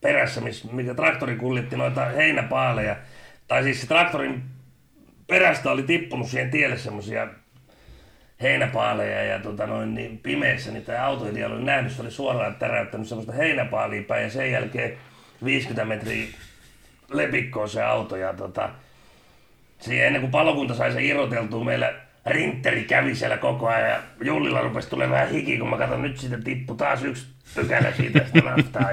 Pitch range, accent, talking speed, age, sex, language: 95-130 Hz, native, 145 wpm, 40-59, male, Finnish